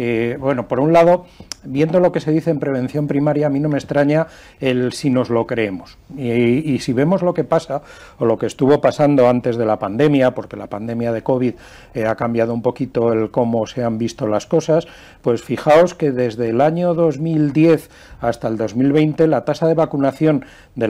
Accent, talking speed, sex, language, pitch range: Spanish, 205 wpm, male, English, 115-150 Hz